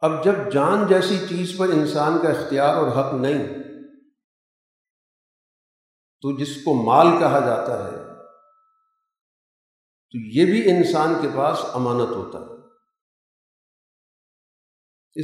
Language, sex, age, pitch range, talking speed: Urdu, male, 50-69, 150-210 Hz, 110 wpm